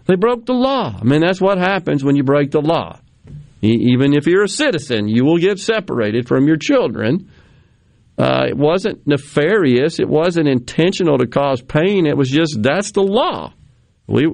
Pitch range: 120-170 Hz